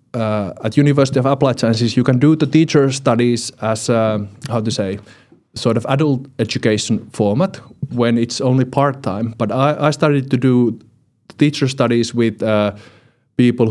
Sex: male